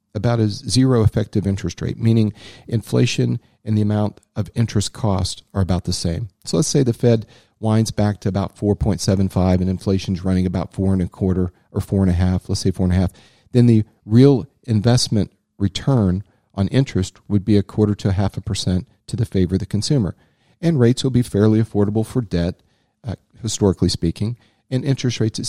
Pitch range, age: 95-115 Hz, 40-59